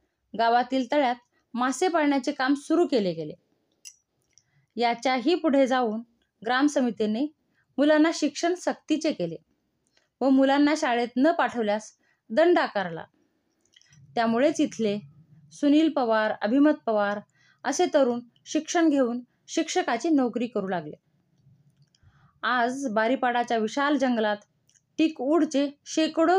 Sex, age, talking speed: female, 20-39, 85 wpm